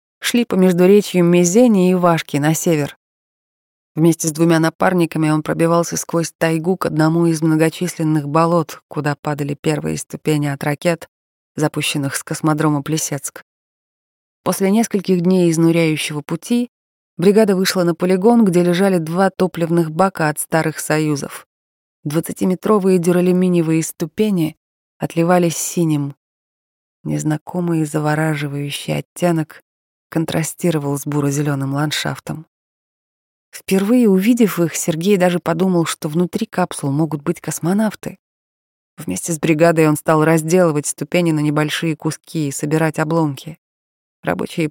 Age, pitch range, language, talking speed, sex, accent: 20-39, 150-175 Hz, Russian, 115 wpm, female, native